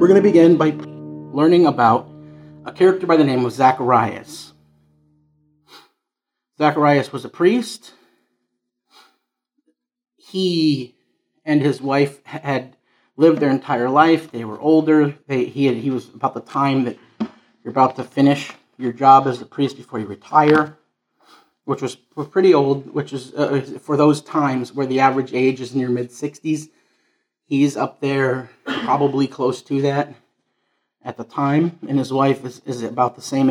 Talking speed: 150 wpm